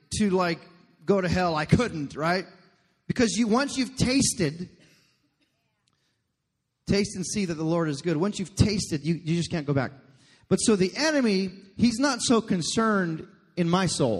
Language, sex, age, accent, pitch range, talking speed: English, male, 30-49, American, 155-210 Hz, 175 wpm